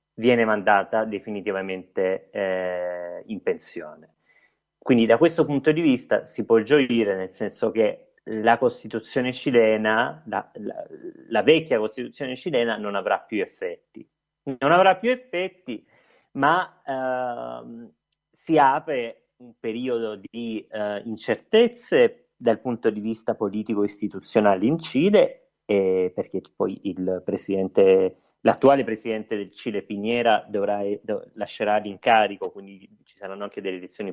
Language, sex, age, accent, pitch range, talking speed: Italian, male, 30-49, native, 105-150 Hz, 120 wpm